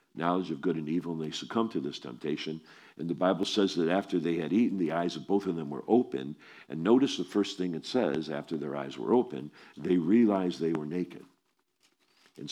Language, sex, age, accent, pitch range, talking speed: English, male, 50-69, American, 75-90 Hz, 220 wpm